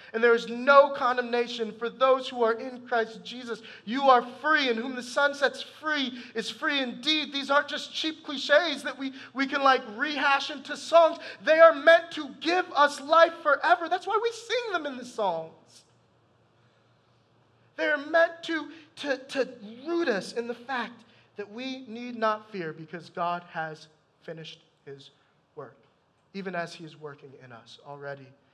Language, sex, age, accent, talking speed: English, male, 30-49, American, 175 wpm